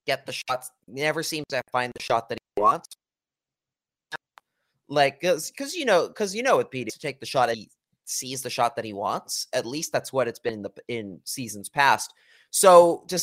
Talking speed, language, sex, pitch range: 220 wpm, English, male, 120-155 Hz